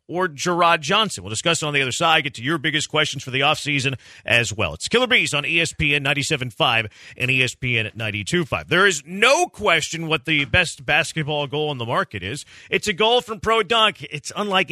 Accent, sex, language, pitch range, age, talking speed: American, male, English, 125-175 Hz, 40-59, 210 wpm